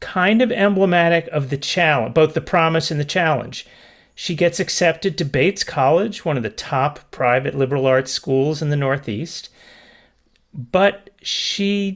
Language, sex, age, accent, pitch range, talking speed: English, male, 40-59, American, 130-185 Hz, 155 wpm